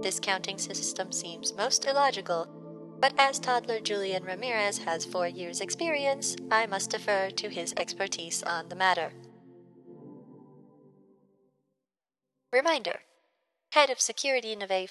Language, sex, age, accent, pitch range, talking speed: English, female, 20-39, American, 180-240 Hz, 115 wpm